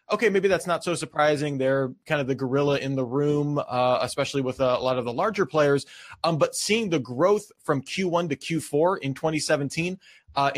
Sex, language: male, English